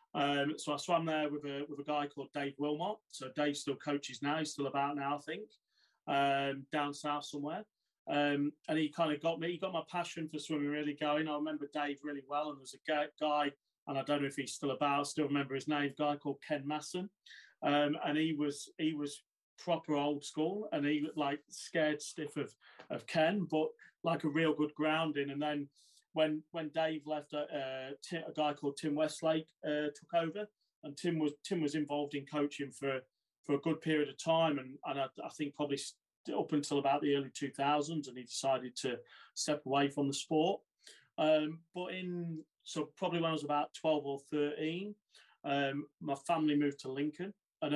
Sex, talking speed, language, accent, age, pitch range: male, 205 wpm, English, British, 30-49, 140-155 Hz